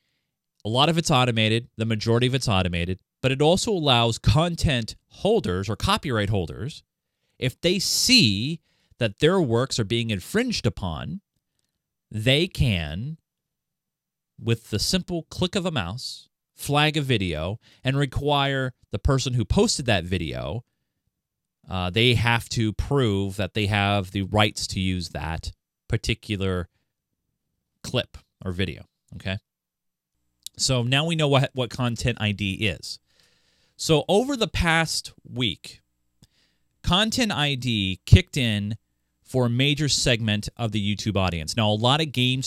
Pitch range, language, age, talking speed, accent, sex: 100-135 Hz, English, 30-49, 140 wpm, American, male